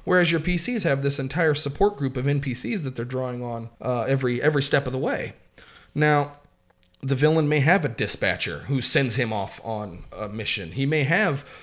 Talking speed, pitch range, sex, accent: 195 wpm, 120-160 Hz, male, American